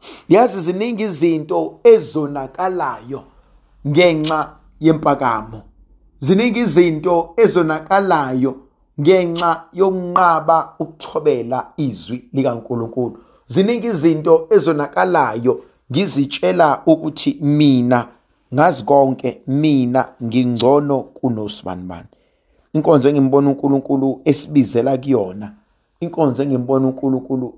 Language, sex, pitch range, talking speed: English, male, 125-180 Hz, 80 wpm